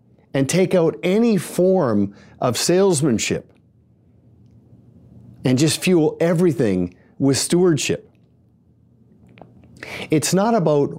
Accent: American